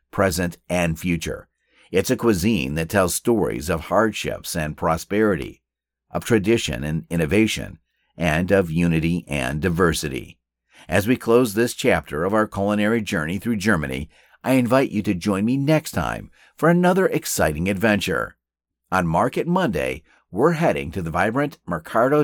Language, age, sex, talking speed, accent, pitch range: English, 50-69, male, 145 wpm, American, 85-120 Hz